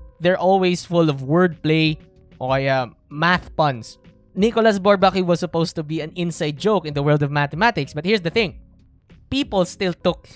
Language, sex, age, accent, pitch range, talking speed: Filipino, male, 20-39, native, 135-180 Hz, 170 wpm